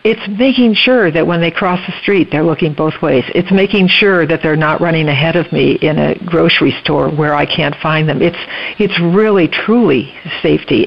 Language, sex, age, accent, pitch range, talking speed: English, female, 60-79, American, 155-195 Hz, 205 wpm